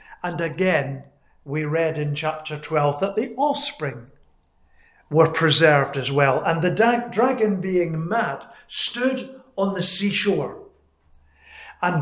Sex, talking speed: male, 120 wpm